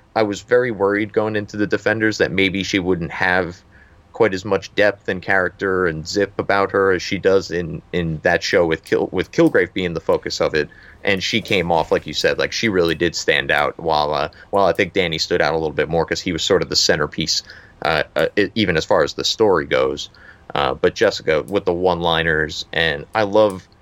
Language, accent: English, American